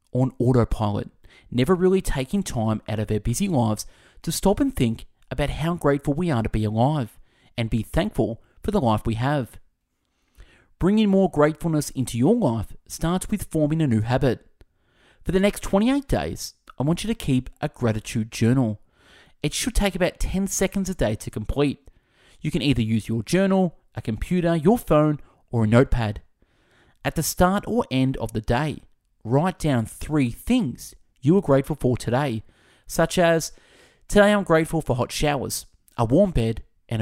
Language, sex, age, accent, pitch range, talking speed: English, male, 30-49, Australian, 115-170 Hz, 175 wpm